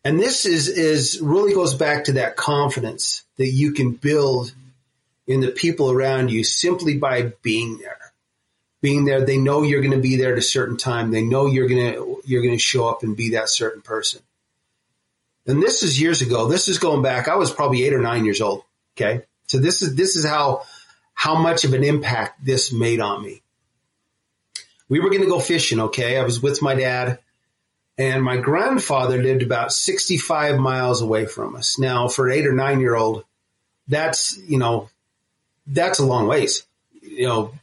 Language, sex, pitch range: English, male, 120-145 Hz